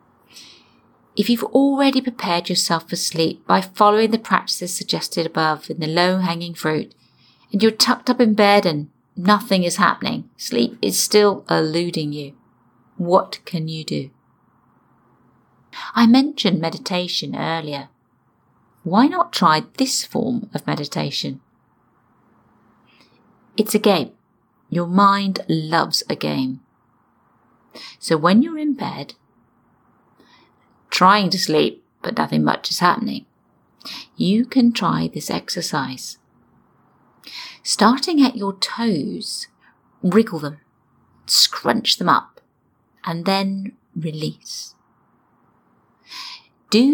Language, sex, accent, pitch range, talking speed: English, female, British, 165-230 Hz, 110 wpm